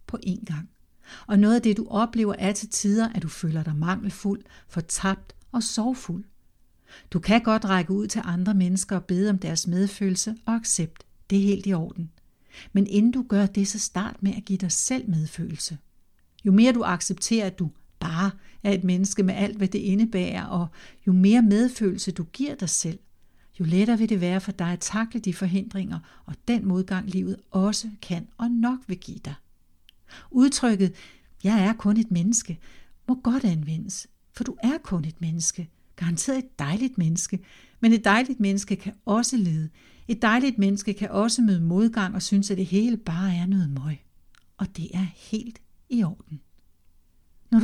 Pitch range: 180-220 Hz